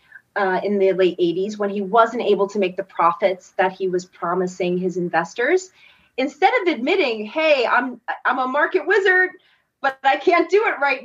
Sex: female